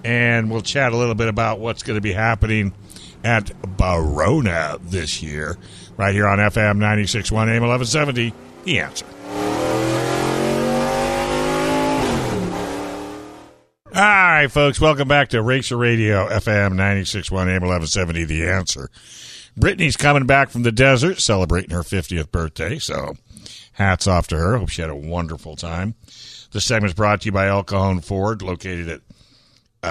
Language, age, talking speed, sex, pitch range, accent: English, 60-79, 140 wpm, male, 90-115 Hz, American